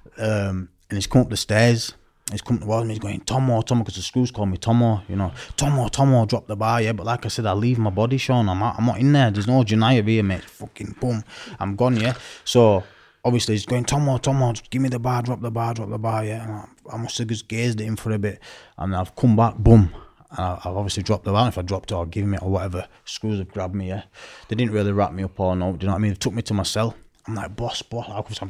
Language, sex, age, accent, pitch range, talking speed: English, male, 20-39, British, 100-120 Hz, 285 wpm